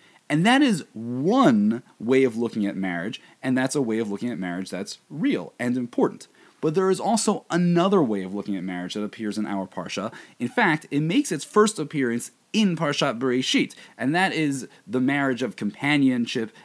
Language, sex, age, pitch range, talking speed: English, male, 30-49, 125-205 Hz, 190 wpm